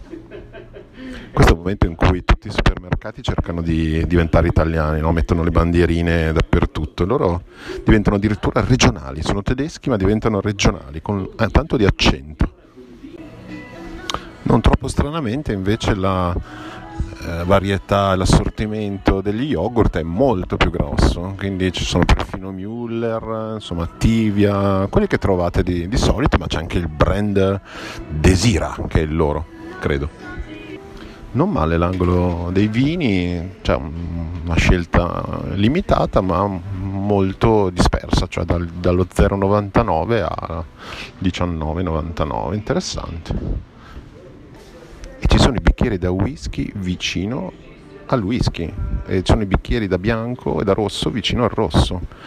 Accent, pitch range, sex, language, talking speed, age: native, 85-100 Hz, male, Italian, 125 wpm, 40-59